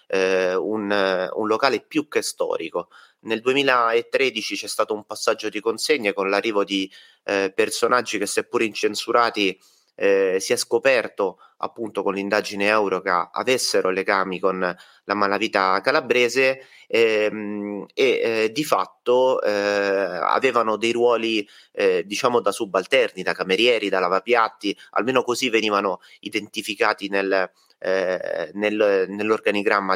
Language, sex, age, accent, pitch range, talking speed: Italian, male, 30-49, native, 100-130 Hz, 125 wpm